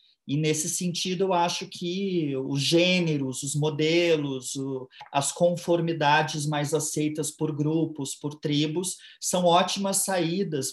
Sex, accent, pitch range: male, Brazilian, 140-175 Hz